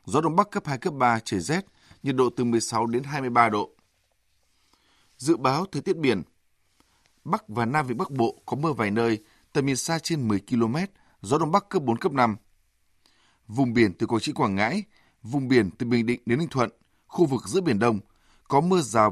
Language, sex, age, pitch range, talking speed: Vietnamese, male, 20-39, 105-150 Hz, 210 wpm